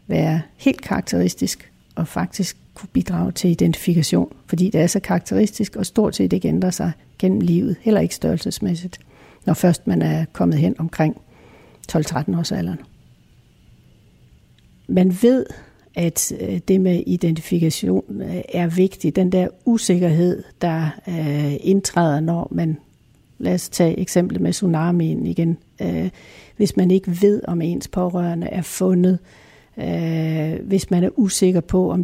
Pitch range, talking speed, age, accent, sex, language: 165-190 Hz, 135 wpm, 60-79, native, female, Danish